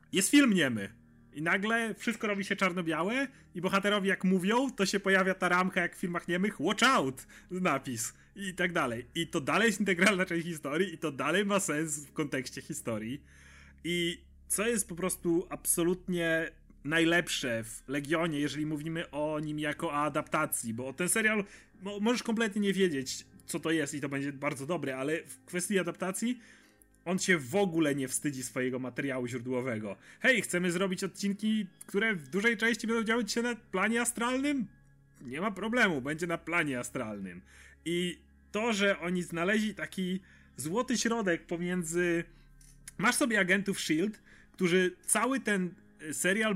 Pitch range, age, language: 150-200 Hz, 30-49, Polish